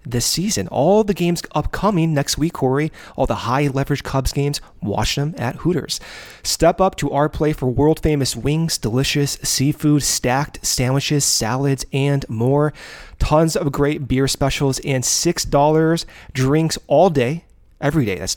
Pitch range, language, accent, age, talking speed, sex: 135-165 Hz, English, American, 30-49, 155 wpm, male